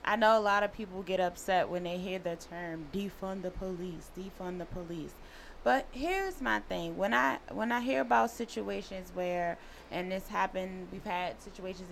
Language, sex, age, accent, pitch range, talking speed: English, female, 20-39, American, 180-215 Hz, 185 wpm